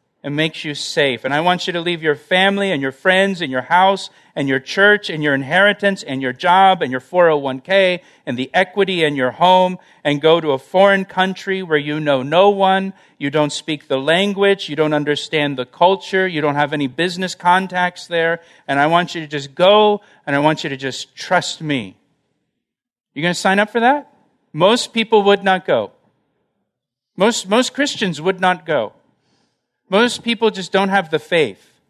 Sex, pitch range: male, 145-190 Hz